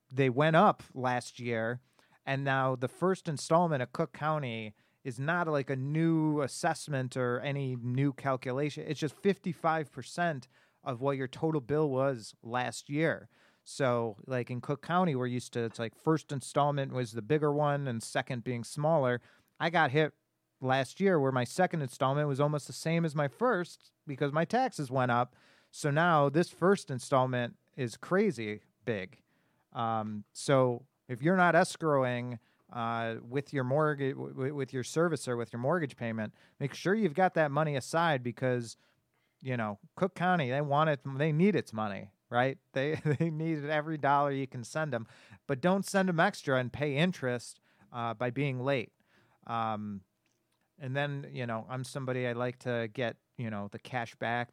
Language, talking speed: English, 175 wpm